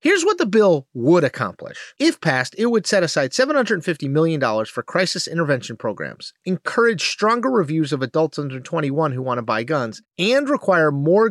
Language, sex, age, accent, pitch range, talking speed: English, male, 30-49, American, 145-205 Hz, 175 wpm